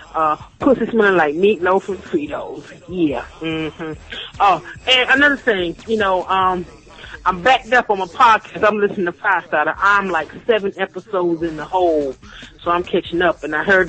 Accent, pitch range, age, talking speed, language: American, 175-220 Hz, 30-49, 175 wpm, English